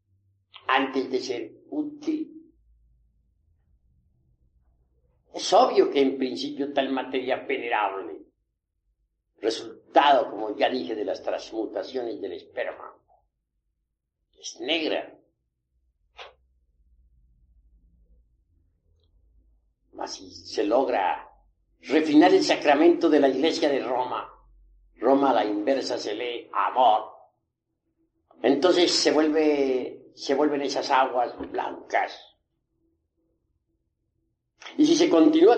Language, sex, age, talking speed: Spanish, male, 60-79, 90 wpm